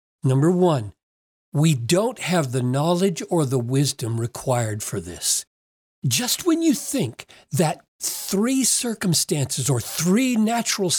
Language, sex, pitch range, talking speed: English, male, 140-220 Hz, 125 wpm